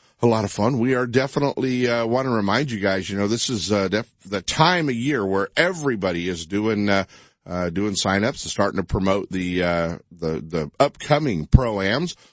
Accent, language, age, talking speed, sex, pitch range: American, English, 50-69, 200 wpm, male, 85-120 Hz